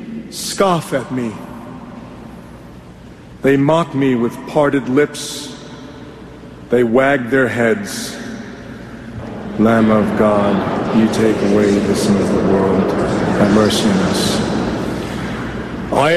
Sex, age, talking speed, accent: male, 50-69, 110 wpm, American